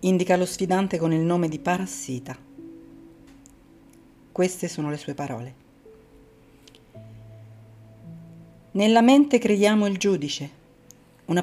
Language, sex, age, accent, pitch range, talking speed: Italian, female, 40-59, native, 140-180 Hz, 100 wpm